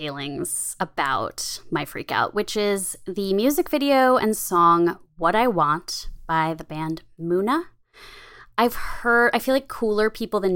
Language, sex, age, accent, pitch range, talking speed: English, female, 20-39, American, 160-210 Hz, 155 wpm